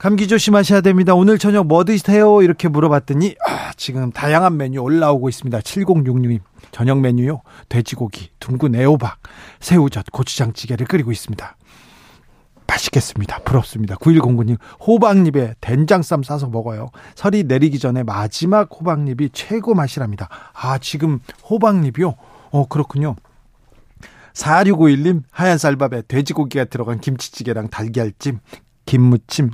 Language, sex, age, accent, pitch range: Korean, male, 40-59, native, 125-170 Hz